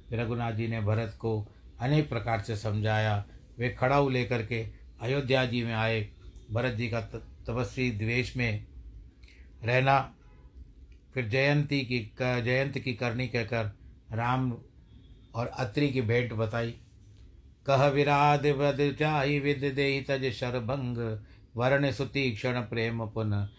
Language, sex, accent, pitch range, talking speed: Hindi, male, native, 110-135 Hz, 125 wpm